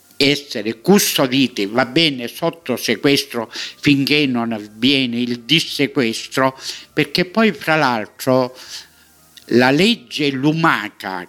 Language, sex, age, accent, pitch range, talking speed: Italian, male, 60-79, native, 120-180 Hz, 95 wpm